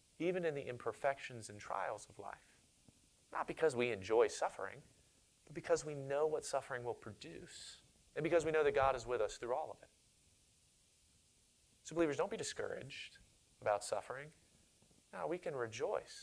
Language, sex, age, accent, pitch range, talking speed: English, male, 30-49, American, 125-195 Hz, 165 wpm